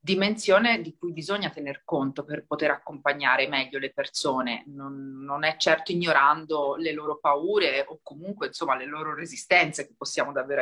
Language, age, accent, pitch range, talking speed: Italian, 30-49, native, 155-215 Hz, 165 wpm